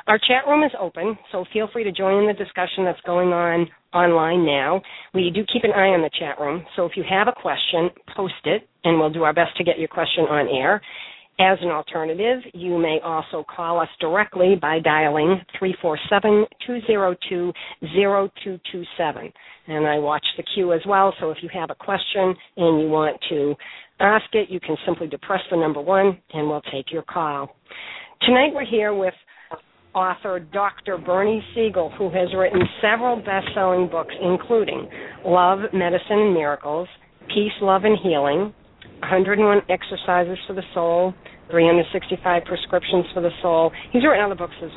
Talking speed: 170 wpm